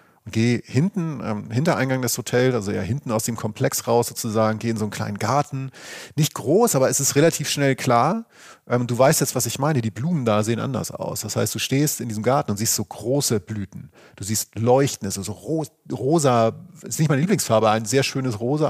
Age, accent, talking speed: 40-59, German, 215 wpm